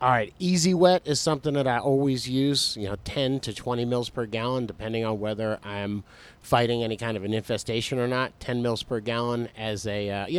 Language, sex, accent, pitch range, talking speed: English, male, American, 110-125 Hz, 220 wpm